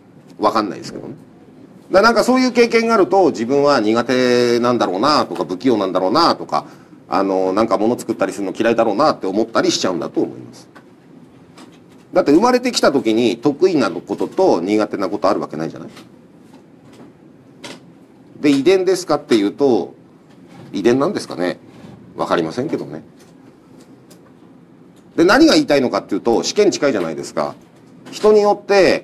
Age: 40-59